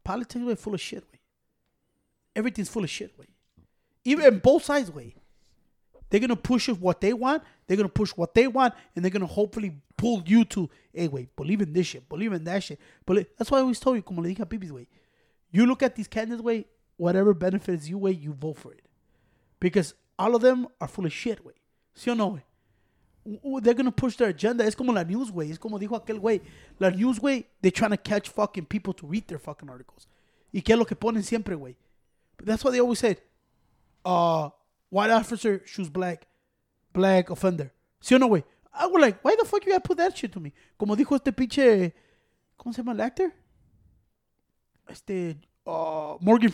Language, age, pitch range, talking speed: English, 30-49, 180-240 Hz, 210 wpm